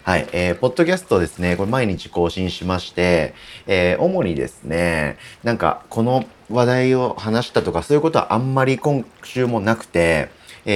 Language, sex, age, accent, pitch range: Japanese, male, 30-49, native, 85-115 Hz